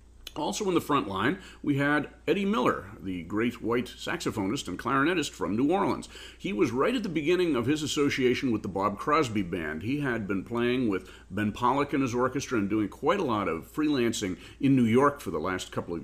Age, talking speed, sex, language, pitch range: 40-59, 215 wpm, male, English, 95-125 Hz